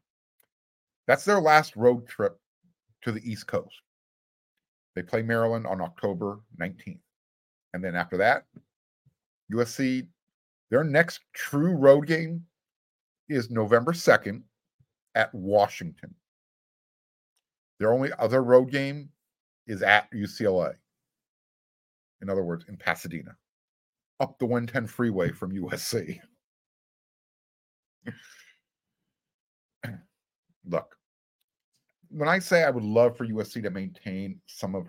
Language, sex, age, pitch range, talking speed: English, male, 50-69, 95-140 Hz, 105 wpm